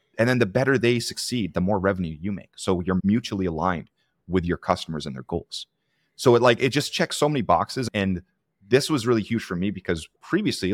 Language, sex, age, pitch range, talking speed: English, male, 30-49, 85-105 Hz, 220 wpm